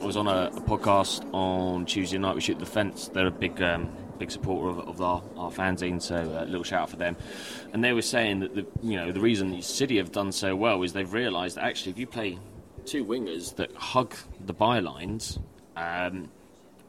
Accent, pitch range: British, 90-115 Hz